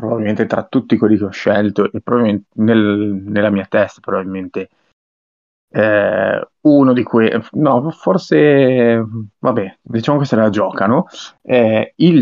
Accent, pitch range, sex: native, 95-110 Hz, male